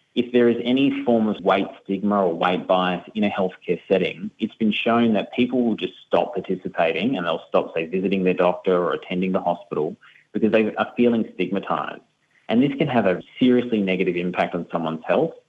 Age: 30-49